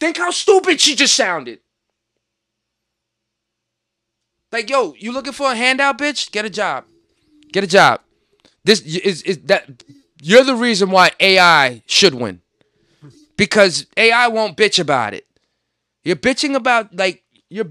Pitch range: 150-235 Hz